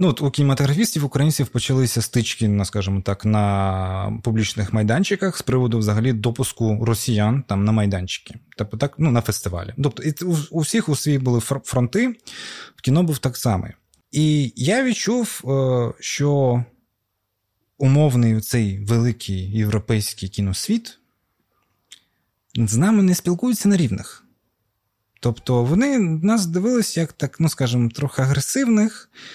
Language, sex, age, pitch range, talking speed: Ukrainian, male, 20-39, 115-170 Hz, 130 wpm